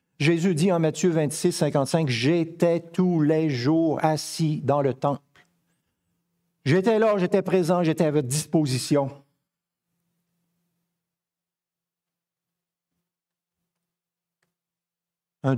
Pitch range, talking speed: 120-170 Hz, 90 wpm